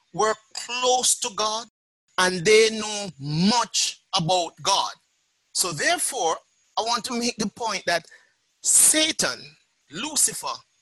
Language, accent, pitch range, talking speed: English, Nigerian, 165-225 Hz, 115 wpm